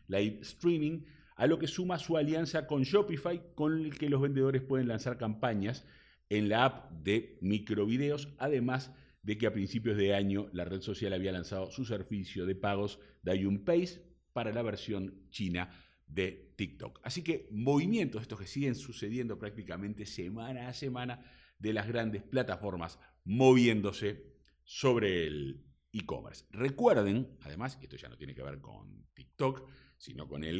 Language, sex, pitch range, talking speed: Spanish, male, 95-130 Hz, 160 wpm